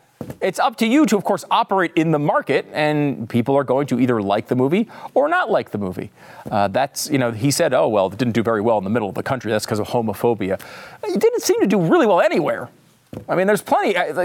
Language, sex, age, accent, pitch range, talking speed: English, male, 40-59, American, 150-250 Hz, 255 wpm